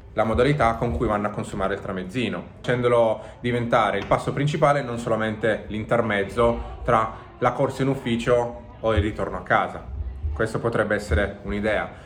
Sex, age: male, 20-39